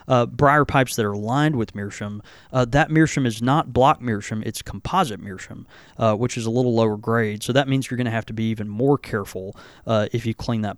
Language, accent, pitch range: English, American, 110-140 Hz